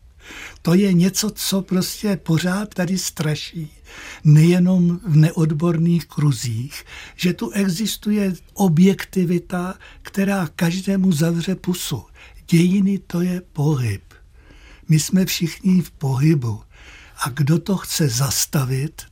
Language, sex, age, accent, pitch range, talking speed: Czech, male, 60-79, native, 150-185 Hz, 105 wpm